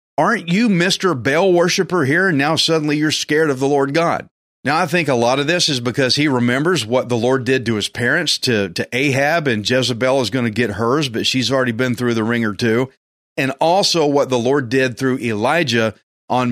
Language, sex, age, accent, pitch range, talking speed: English, male, 40-59, American, 125-175 Hz, 220 wpm